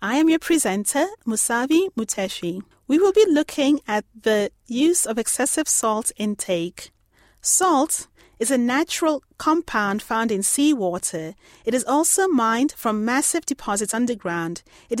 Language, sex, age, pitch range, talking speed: English, female, 30-49, 205-295 Hz, 135 wpm